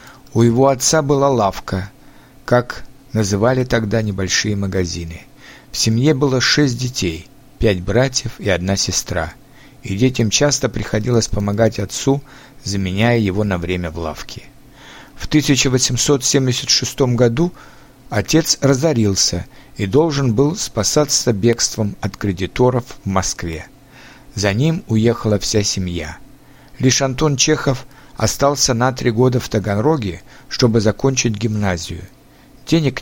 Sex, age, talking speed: male, 50-69, 115 wpm